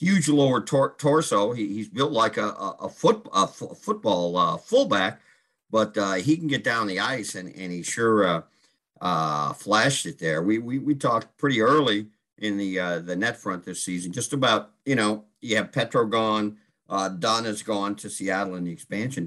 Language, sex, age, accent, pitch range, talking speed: English, male, 50-69, American, 95-120 Hz, 200 wpm